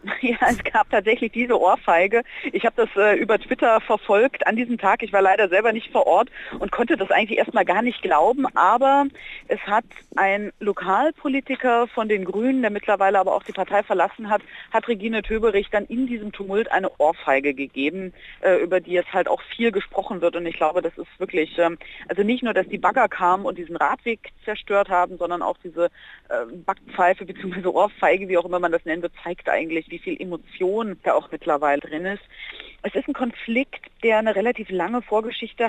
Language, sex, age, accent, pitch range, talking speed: German, female, 40-59, German, 190-235 Hz, 200 wpm